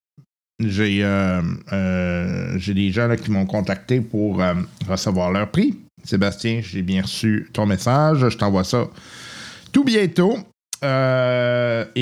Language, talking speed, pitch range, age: French, 125 wpm, 110-145 Hz, 50-69